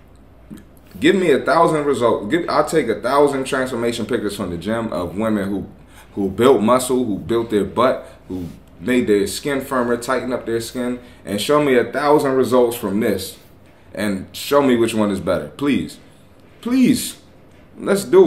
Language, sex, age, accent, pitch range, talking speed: English, male, 30-49, American, 100-125 Hz, 170 wpm